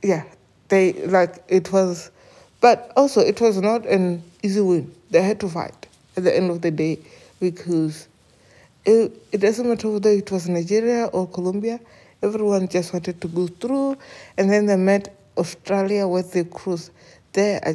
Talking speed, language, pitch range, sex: 170 wpm, English, 120-200 Hz, female